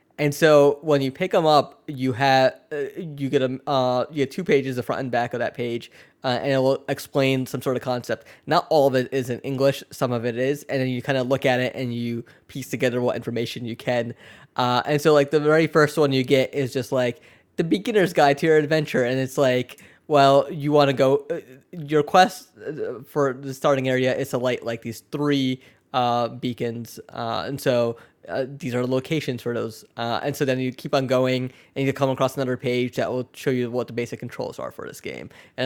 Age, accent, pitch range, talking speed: 10-29, American, 125-145 Hz, 230 wpm